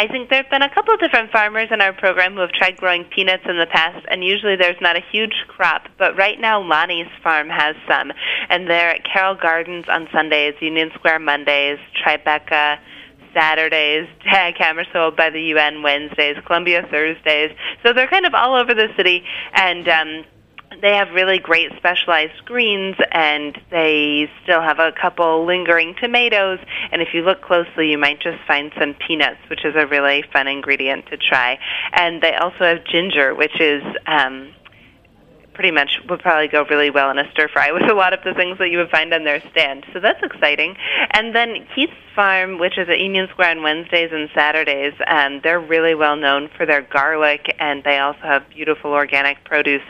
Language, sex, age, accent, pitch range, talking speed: English, female, 20-39, American, 150-185 Hz, 195 wpm